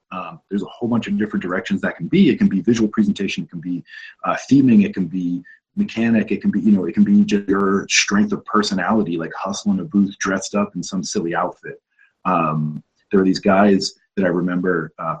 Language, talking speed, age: English, 225 wpm, 30-49